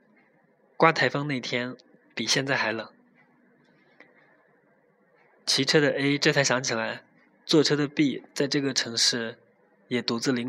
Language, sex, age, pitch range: Chinese, male, 20-39, 120-145 Hz